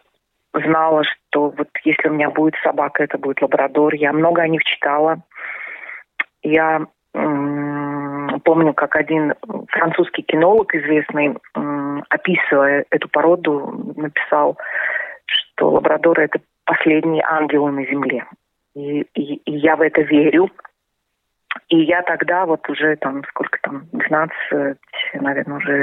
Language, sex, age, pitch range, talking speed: Russian, female, 30-49, 150-170 Hz, 115 wpm